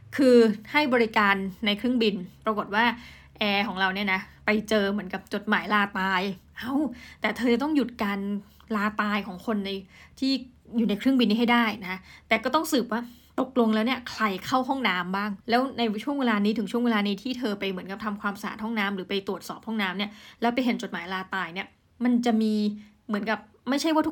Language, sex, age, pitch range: Thai, female, 20-39, 200-240 Hz